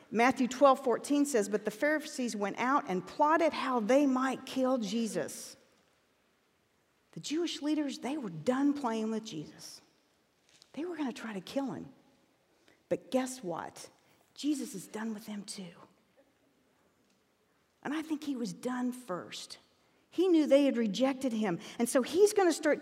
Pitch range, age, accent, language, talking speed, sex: 210-295 Hz, 50-69, American, English, 160 wpm, female